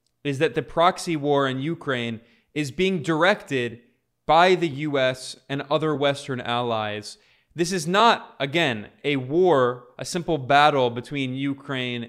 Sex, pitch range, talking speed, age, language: male, 120-150 Hz, 140 wpm, 20-39, English